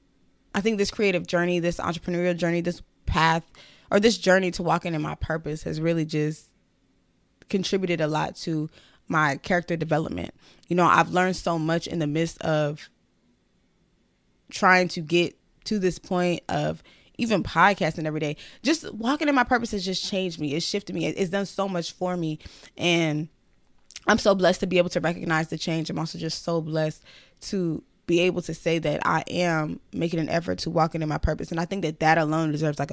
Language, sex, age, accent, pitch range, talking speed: English, female, 20-39, American, 160-185 Hz, 195 wpm